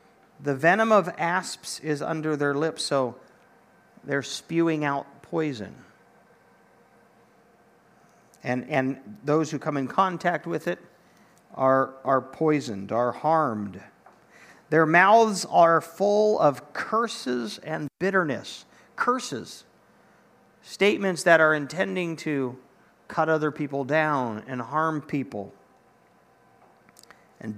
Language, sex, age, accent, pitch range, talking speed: English, male, 50-69, American, 135-180 Hz, 105 wpm